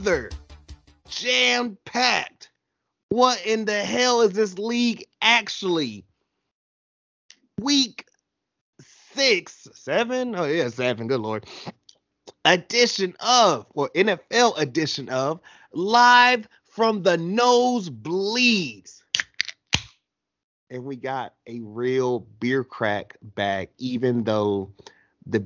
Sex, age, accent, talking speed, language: male, 30-49, American, 90 wpm, English